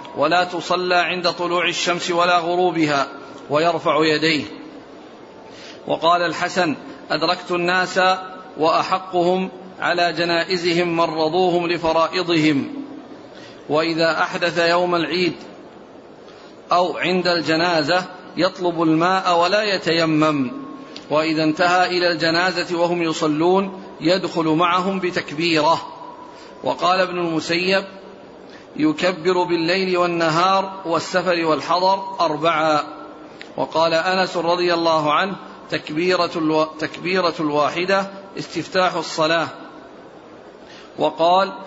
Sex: male